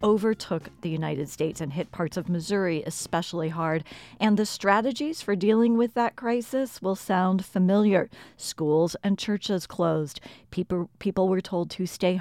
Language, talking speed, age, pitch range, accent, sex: English, 155 wpm, 40-59, 165-210 Hz, American, female